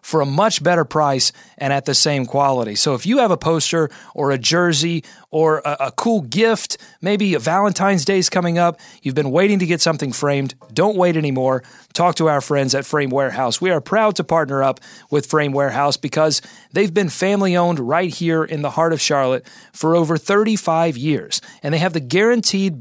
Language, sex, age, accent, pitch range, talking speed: English, male, 30-49, American, 145-190 Hz, 205 wpm